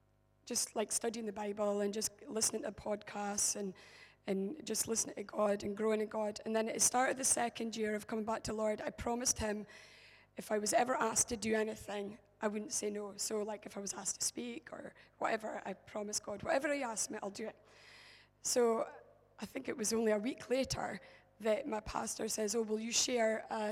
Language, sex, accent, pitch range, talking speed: English, female, British, 215-230 Hz, 220 wpm